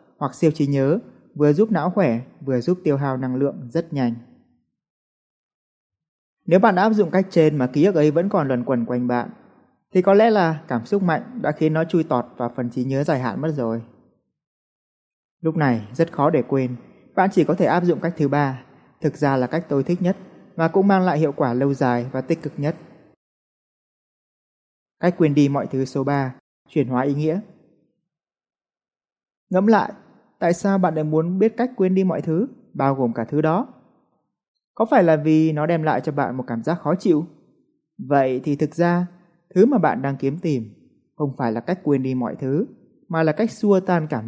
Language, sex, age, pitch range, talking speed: Vietnamese, male, 20-39, 135-175 Hz, 210 wpm